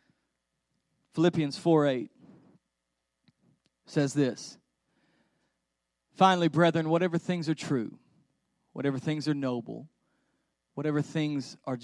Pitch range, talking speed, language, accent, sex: 130-165 Hz, 90 wpm, English, American, male